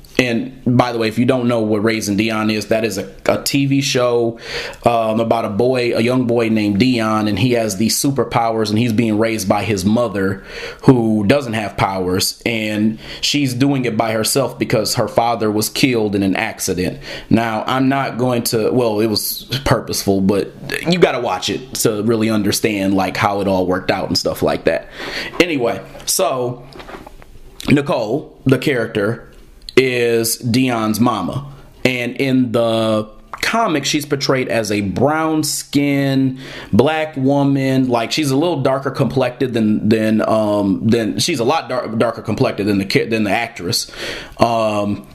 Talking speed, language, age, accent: 170 wpm, English, 30-49, American